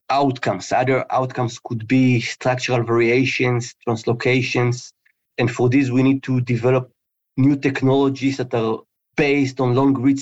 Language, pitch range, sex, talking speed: English, 120-145 Hz, male, 135 wpm